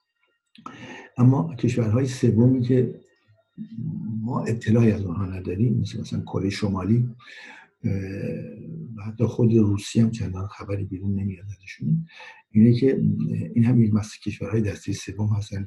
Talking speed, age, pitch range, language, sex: 125 wpm, 60-79, 100-115 Hz, Persian, male